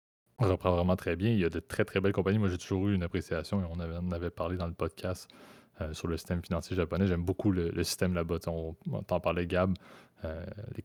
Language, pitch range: French, 85-95 Hz